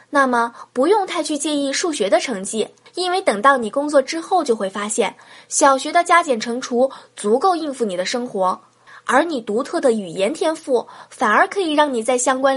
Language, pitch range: Chinese, 220-320 Hz